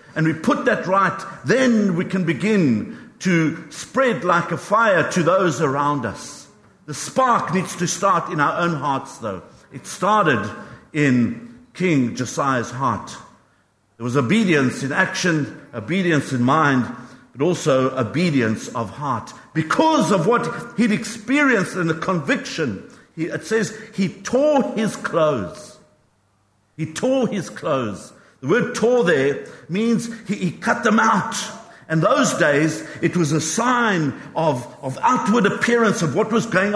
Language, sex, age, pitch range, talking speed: English, male, 60-79, 145-210 Hz, 145 wpm